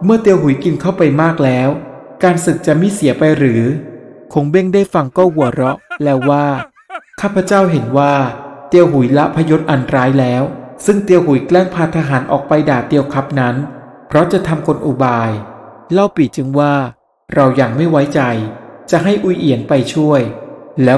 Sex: male